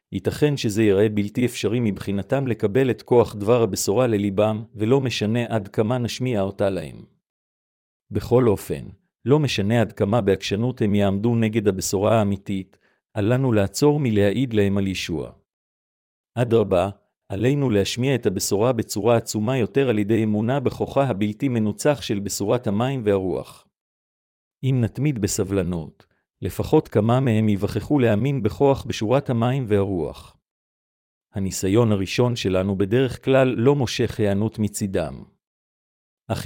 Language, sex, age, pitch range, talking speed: Hebrew, male, 50-69, 100-125 Hz, 125 wpm